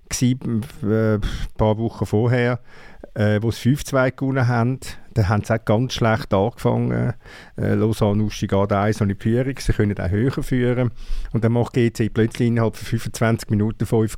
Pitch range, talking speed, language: 105-125 Hz, 170 wpm, German